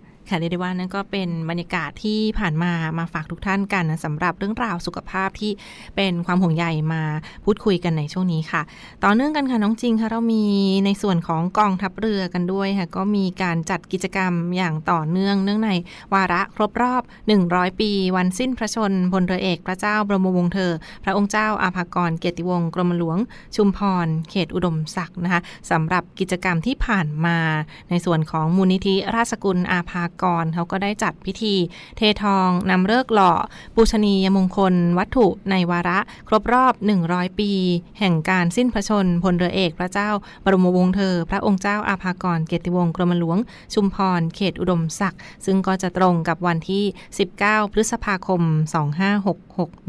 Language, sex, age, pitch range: Thai, female, 20-39, 175-200 Hz